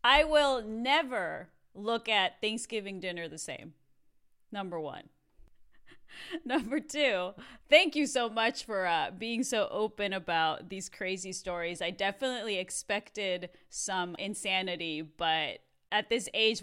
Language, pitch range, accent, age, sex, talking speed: English, 180-235 Hz, American, 30-49, female, 125 wpm